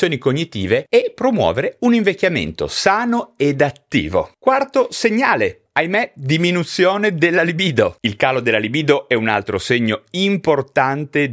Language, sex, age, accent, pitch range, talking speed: Italian, male, 30-49, native, 115-185 Hz, 120 wpm